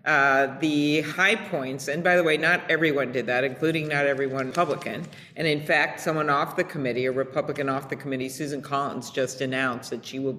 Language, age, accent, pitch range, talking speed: English, 50-69, American, 135-165 Hz, 200 wpm